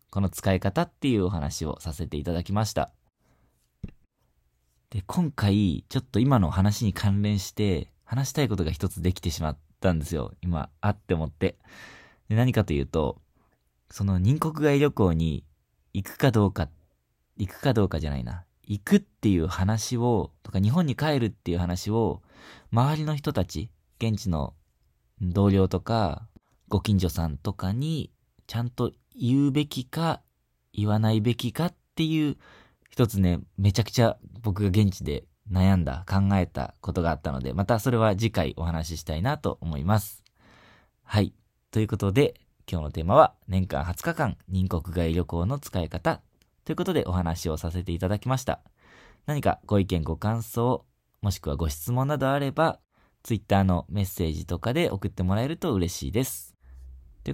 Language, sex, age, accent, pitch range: Japanese, male, 20-39, native, 85-115 Hz